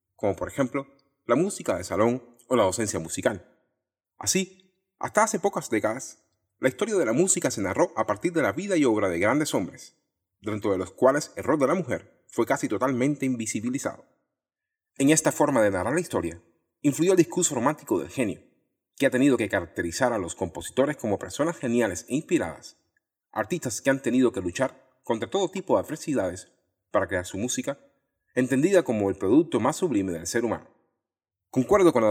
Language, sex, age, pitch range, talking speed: Spanish, male, 30-49, 100-145 Hz, 185 wpm